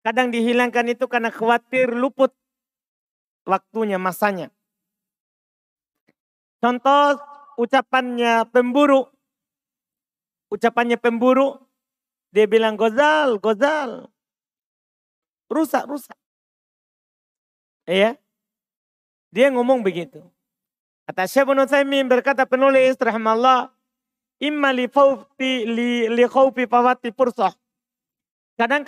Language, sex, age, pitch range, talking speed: Indonesian, male, 40-59, 225-265 Hz, 75 wpm